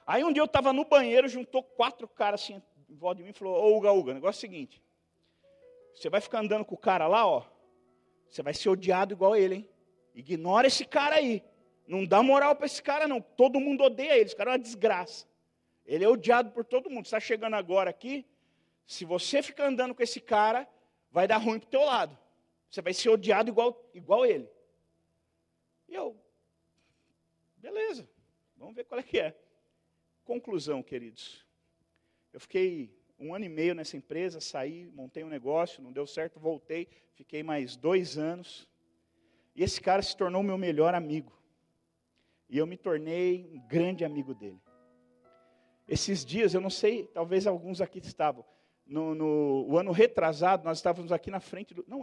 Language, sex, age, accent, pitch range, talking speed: Portuguese, male, 40-59, Brazilian, 150-230 Hz, 185 wpm